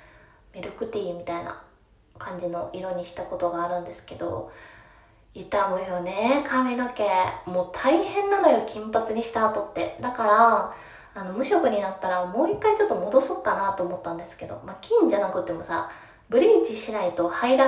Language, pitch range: Japanese, 180-225 Hz